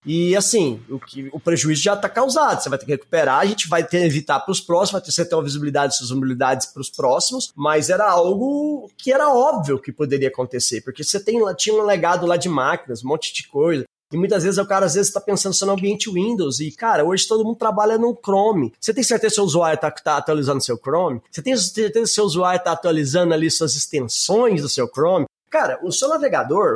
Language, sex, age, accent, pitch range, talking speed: Portuguese, male, 20-39, Brazilian, 165-230 Hz, 240 wpm